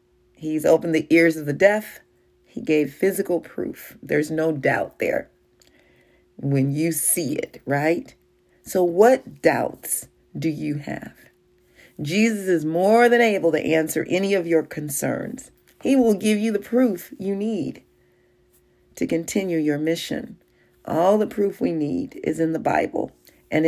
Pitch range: 155-195 Hz